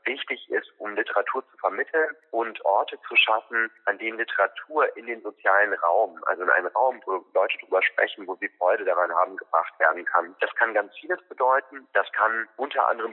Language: German